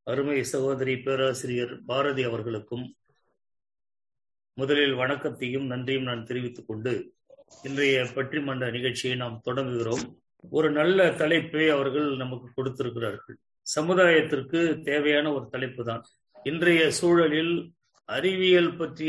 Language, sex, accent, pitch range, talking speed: English, male, Indian, 135-170 Hz, 65 wpm